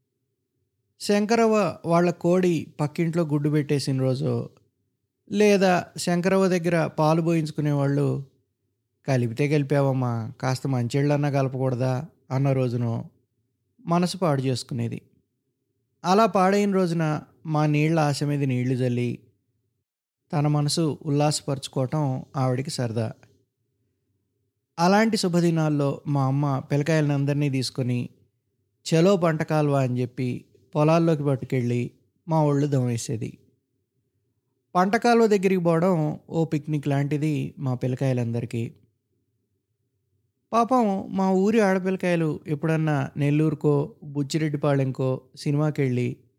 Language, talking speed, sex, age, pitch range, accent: Telugu, 90 wpm, male, 20-39, 125-160 Hz, native